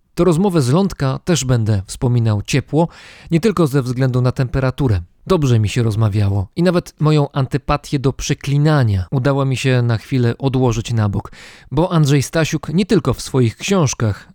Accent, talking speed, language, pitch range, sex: native, 165 wpm, Polish, 115-150 Hz, male